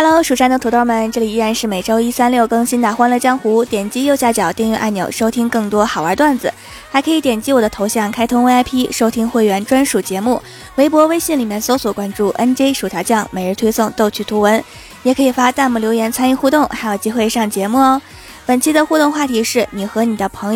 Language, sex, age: Chinese, female, 20-39